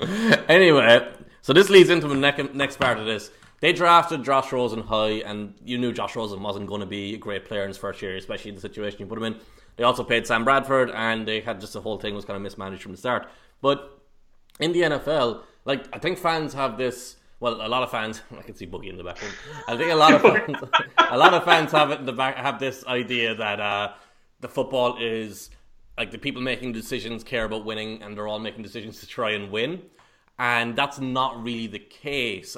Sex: male